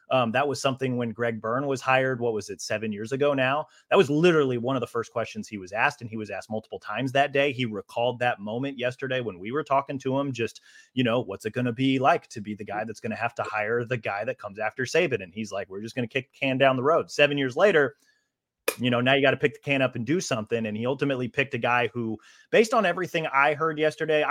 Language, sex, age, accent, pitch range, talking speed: English, male, 30-49, American, 120-145 Hz, 280 wpm